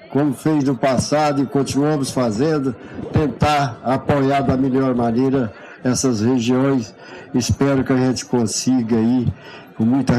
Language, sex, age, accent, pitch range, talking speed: Portuguese, male, 60-79, Brazilian, 125-140 Hz, 130 wpm